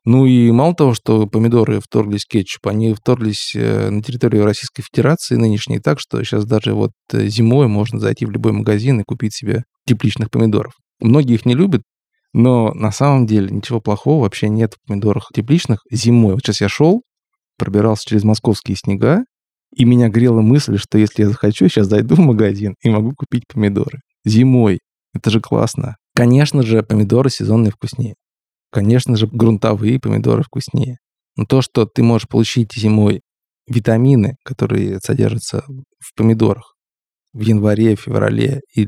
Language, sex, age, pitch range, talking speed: Russian, male, 20-39, 105-130 Hz, 155 wpm